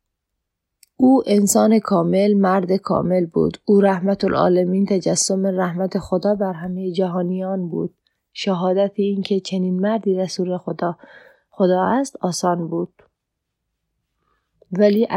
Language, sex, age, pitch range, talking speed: Persian, female, 30-49, 180-205 Hz, 105 wpm